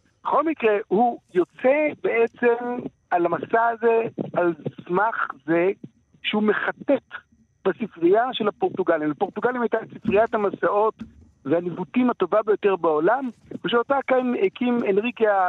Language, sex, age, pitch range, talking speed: Hebrew, male, 60-79, 170-235 Hz, 110 wpm